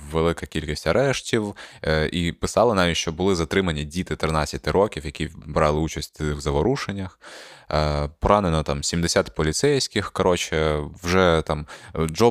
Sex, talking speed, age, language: male, 130 wpm, 20-39, Ukrainian